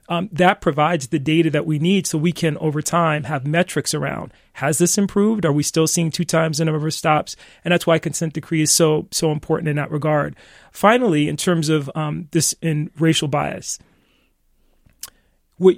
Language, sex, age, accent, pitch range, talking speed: English, male, 30-49, American, 150-170 Hz, 195 wpm